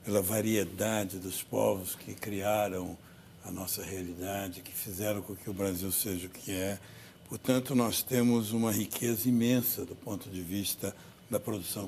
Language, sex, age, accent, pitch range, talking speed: Portuguese, male, 60-79, Brazilian, 100-125 Hz, 155 wpm